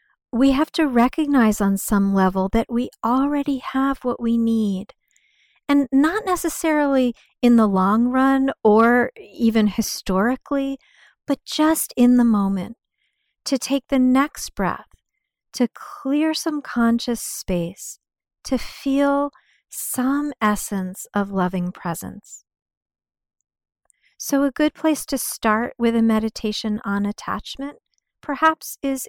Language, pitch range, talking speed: English, 200-280 Hz, 120 wpm